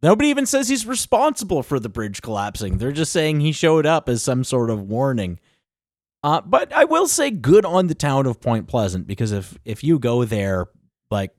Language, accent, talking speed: English, American, 205 wpm